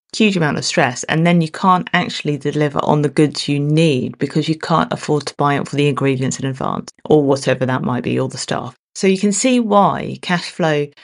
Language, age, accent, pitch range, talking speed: English, 30-49, British, 135-170 Hz, 230 wpm